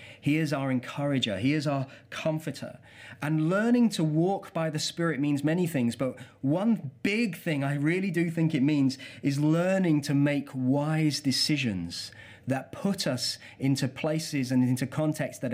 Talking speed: 165 wpm